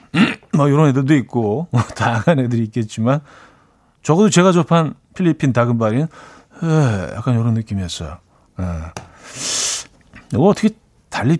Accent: native